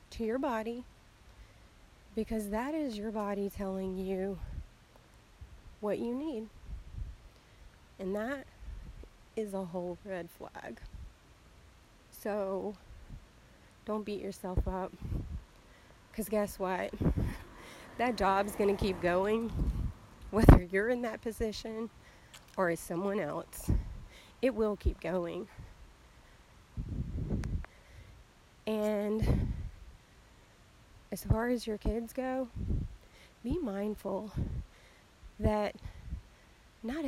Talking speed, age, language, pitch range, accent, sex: 95 wpm, 30-49, English, 190-225 Hz, American, female